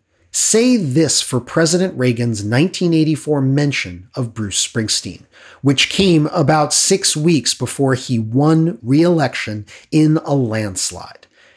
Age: 40-59